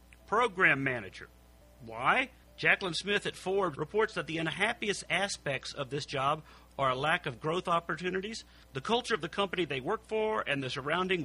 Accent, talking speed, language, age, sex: American, 170 wpm, English, 50-69, male